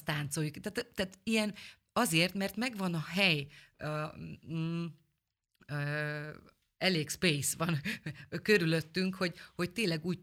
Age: 30-49